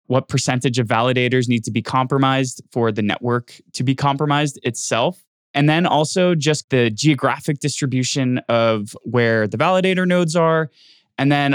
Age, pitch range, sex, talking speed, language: 20-39, 115-150 Hz, male, 155 wpm, English